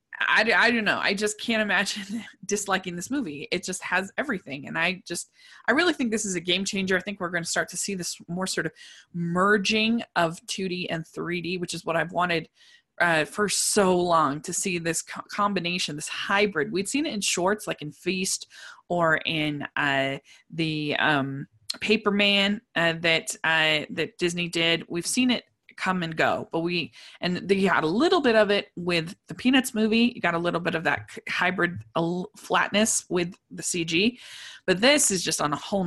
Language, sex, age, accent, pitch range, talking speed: English, female, 20-39, American, 155-200 Hz, 200 wpm